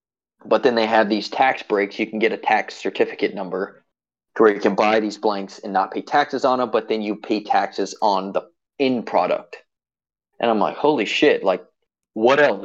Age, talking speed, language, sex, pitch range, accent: 20-39, 205 wpm, English, male, 110-165 Hz, American